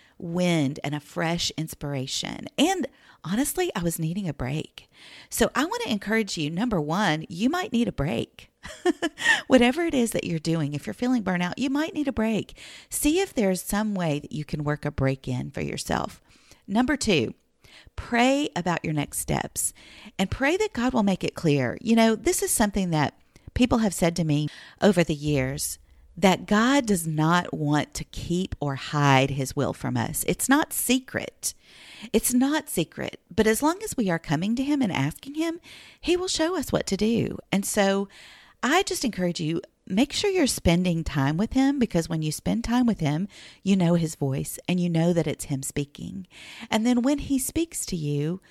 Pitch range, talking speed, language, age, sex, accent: 150-240 Hz, 195 wpm, English, 40-59, female, American